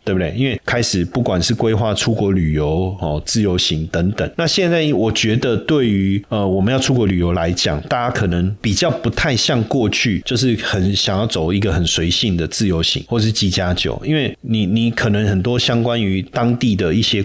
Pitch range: 95-120 Hz